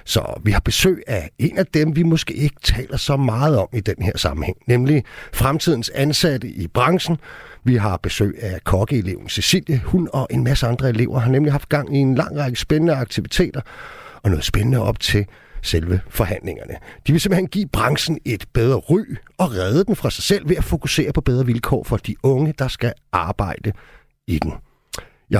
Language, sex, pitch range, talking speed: Danish, male, 100-145 Hz, 195 wpm